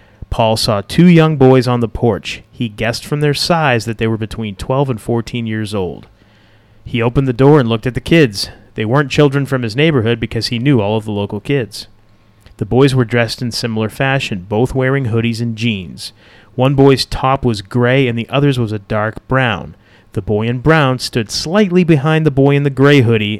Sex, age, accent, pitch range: male, 30-49, American, 110-135 Hz